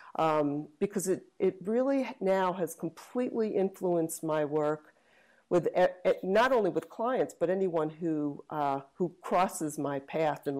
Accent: American